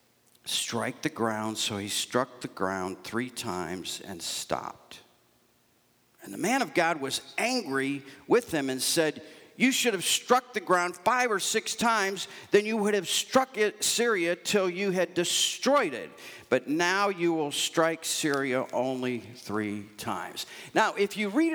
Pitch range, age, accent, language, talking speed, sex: 145-215 Hz, 50-69, American, English, 160 wpm, male